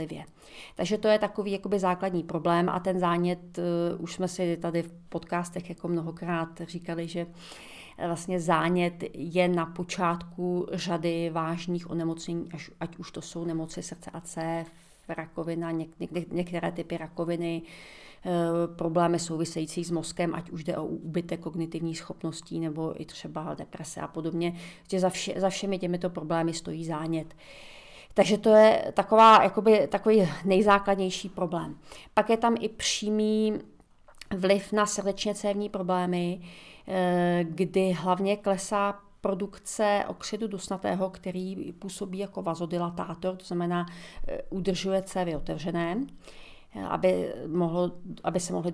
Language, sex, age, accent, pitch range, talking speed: Czech, female, 40-59, native, 170-190 Hz, 130 wpm